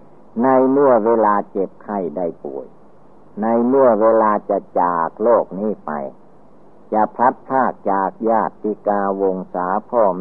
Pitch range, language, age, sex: 95-110 Hz, Thai, 60-79, male